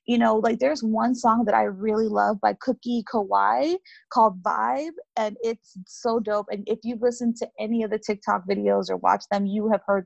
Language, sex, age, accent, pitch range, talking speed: English, female, 20-39, American, 200-250 Hz, 210 wpm